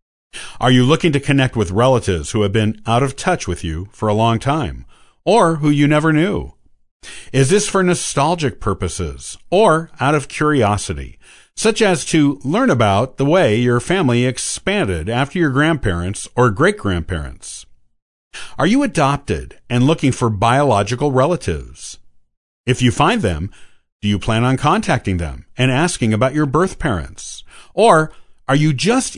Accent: American